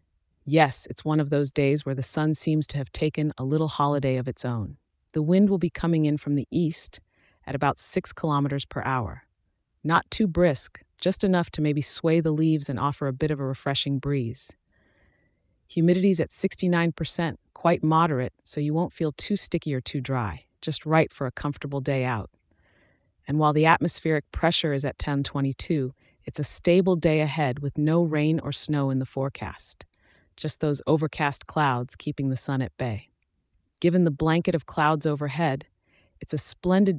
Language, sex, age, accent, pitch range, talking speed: English, female, 30-49, American, 135-160 Hz, 180 wpm